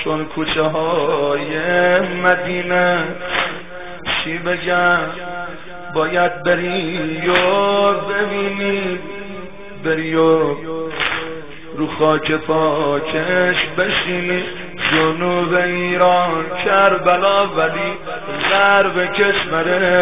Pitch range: 160-200 Hz